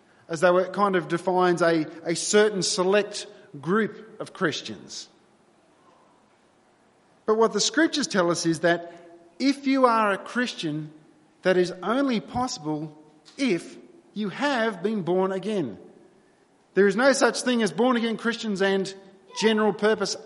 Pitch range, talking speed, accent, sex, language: 175-220 Hz, 140 wpm, Australian, male, English